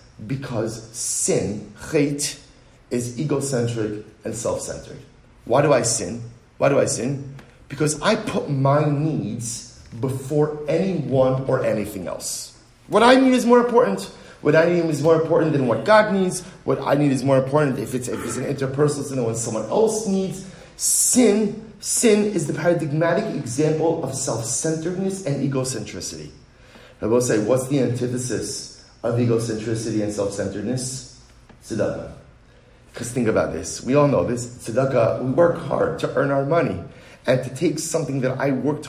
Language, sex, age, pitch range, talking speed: English, male, 40-59, 125-155 Hz, 160 wpm